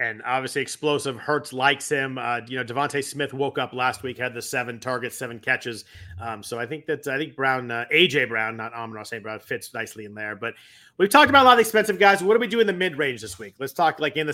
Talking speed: 270 wpm